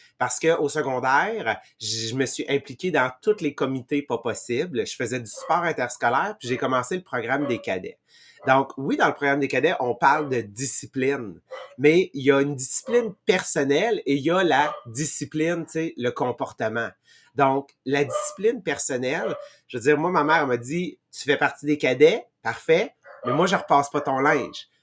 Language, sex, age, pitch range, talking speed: English, male, 30-49, 135-165 Hz, 195 wpm